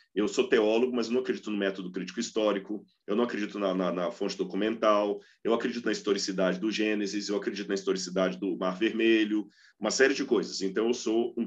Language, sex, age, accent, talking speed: Portuguese, male, 40-59, Brazilian, 205 wpm